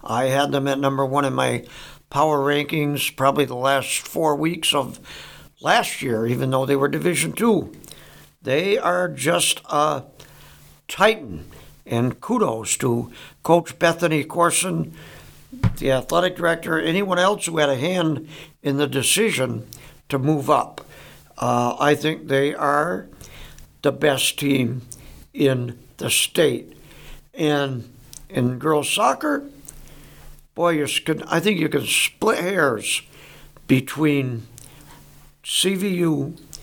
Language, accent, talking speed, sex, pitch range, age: English, American, 120 wpm, male, 130-165 Hz, 60-79